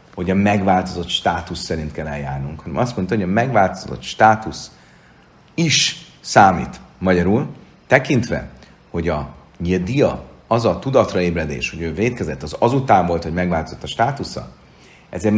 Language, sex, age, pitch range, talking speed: Hungarian, male, 40-59, 80-105 Hz, 145 wpm